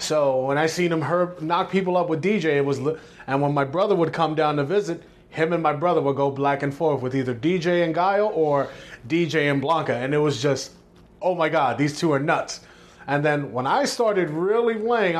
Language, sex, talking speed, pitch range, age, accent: English, male, 230 wpm, 135-170 Hz, 30-49, American